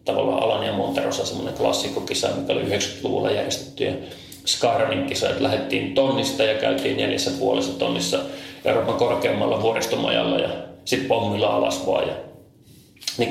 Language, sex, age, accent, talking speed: Finnish, male, 30-49, native, 130 wpm